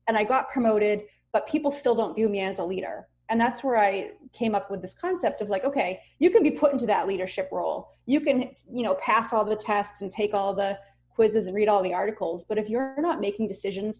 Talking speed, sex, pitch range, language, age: 245 wpm, female, 185-225 Hz, English, 30-49